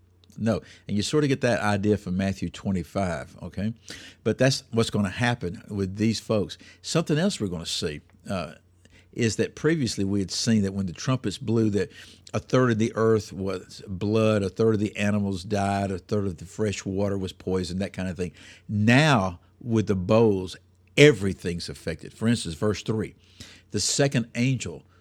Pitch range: 90-115 Hz